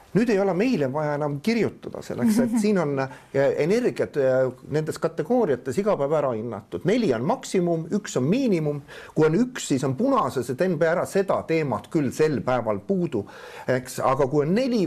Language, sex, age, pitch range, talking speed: English, male, 50-69, 145-200 Hz, 175 wpm